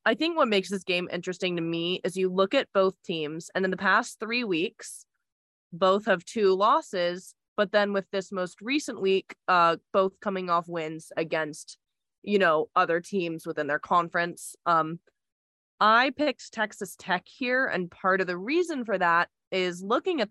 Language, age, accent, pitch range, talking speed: English, 20-39, American, 175-225 Hz, 180 wpm